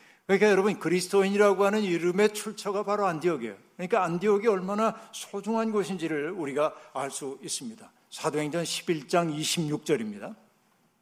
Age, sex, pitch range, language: 60-79, male, 155-195 Hz, Korean